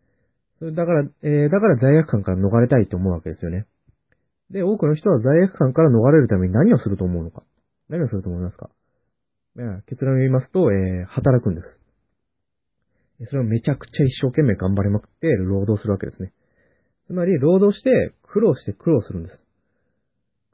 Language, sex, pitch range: Japanese, male, 100-155 Hz